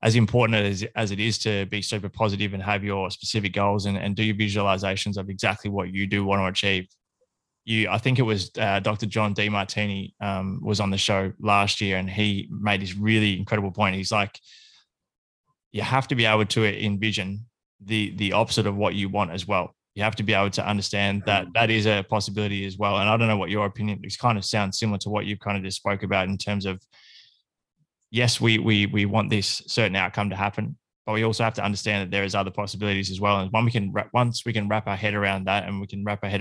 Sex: male